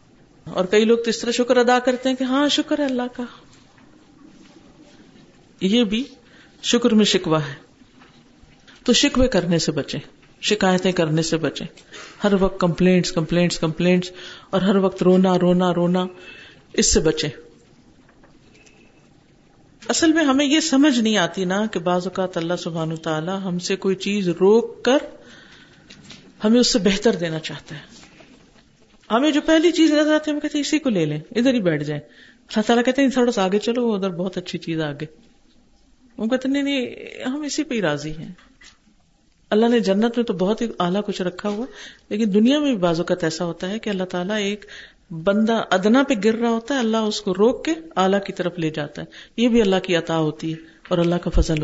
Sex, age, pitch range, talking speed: female, 50-69, 180-255 Hz, 190 wpm